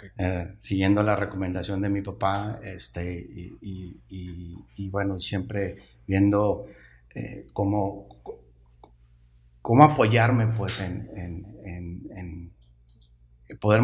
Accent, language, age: Mexican, Spanish, 50-69